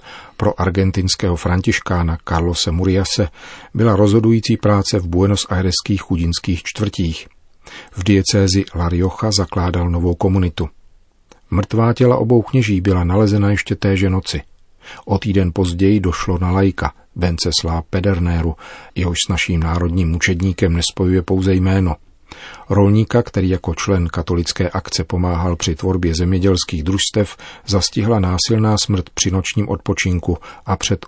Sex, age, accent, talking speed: male, 40-59, native, 120 wpm